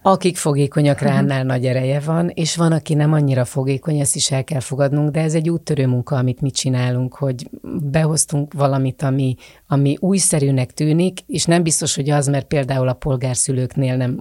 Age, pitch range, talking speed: 30-49, 135-155 Hz, 175 wpm